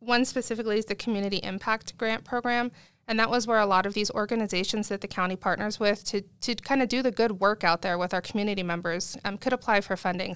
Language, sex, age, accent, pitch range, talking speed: English, female, 20-39, American, 185-220 Hz, 230 wpm